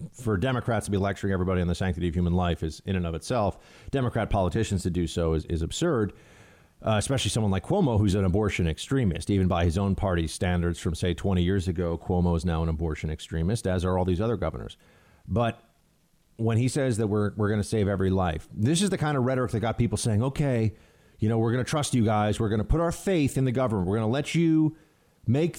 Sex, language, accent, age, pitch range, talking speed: male, English, American, 40-59, 95-130 Hz, 240 wpm